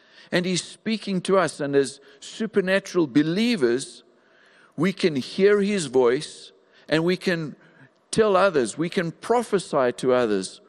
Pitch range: 145-195 Hz